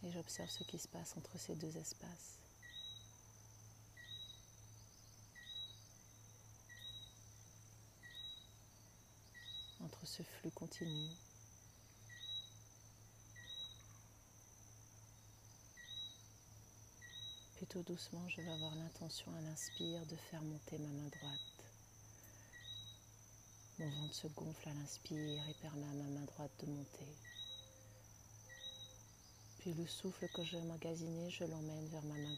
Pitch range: 110-150 Hz